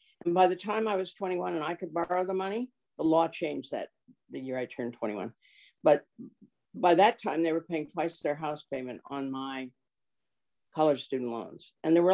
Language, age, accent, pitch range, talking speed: English, 50-69, American, 135-185 Hz, 205 wpm